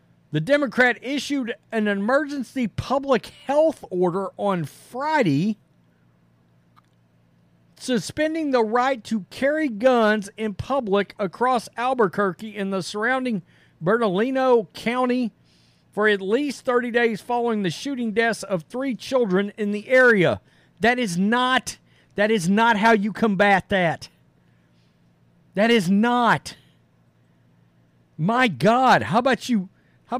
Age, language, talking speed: 50-69, English, 115 wpm